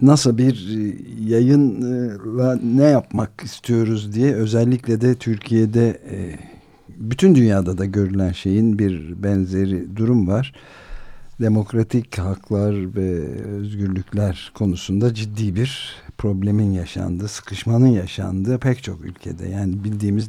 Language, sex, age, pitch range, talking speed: Turkish, male, 60-79, 95-115 Hz, 105 wpm